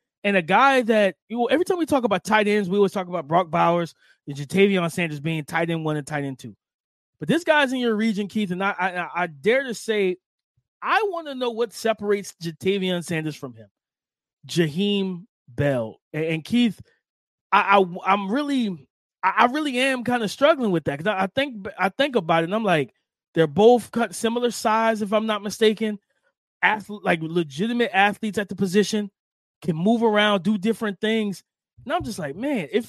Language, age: English, 20-39